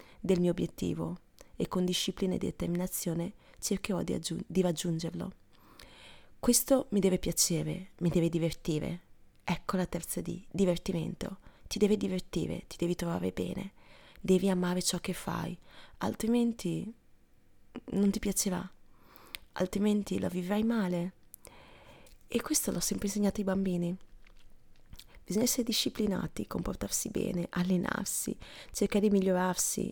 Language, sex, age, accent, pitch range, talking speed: Italian, female, 20-39, native, 175-210 Hz, 120 wpm